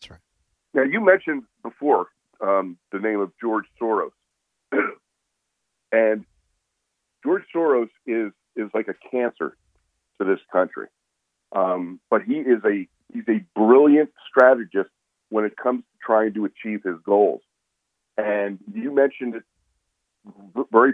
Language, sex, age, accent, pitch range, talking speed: English, male, 50-69, American, 100-130 Hz, 125 wpm